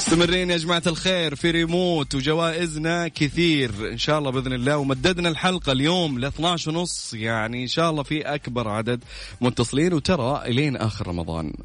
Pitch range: 100-145 Hz